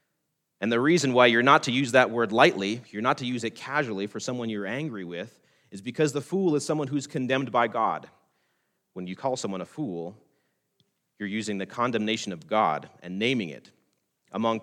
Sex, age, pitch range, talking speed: male, 30-49, 100-130 Hz, 195 wpm